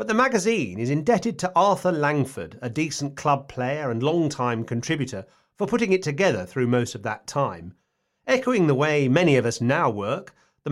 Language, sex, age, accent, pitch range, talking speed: English, male, 40-59, British, 115-160 Hz, 185 wpm